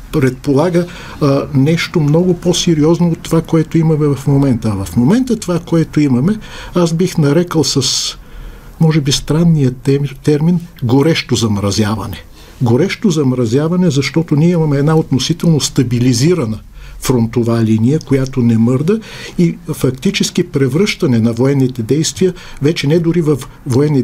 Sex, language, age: male, Bulgarian, 50-69